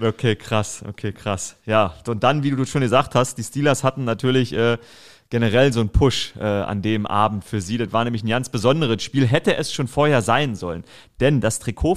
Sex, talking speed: male, 215 wpm